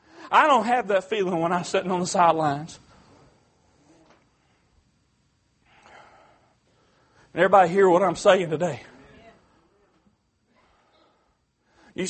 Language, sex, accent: English, male, American